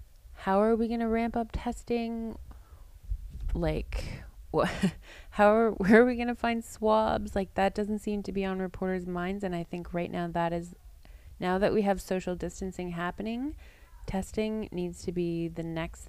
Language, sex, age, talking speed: English, female, 20-39, 170 wpm